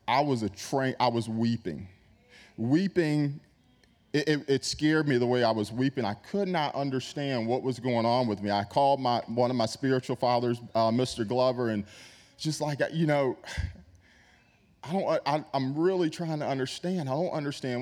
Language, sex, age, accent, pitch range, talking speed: English, male, 30-49, American, 115-145 Hz, 185 wpm